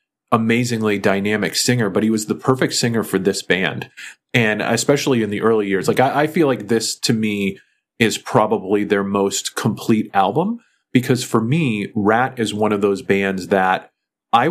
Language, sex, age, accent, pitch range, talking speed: English, male, 30-49, American, 100-125 Hz, 180 wpm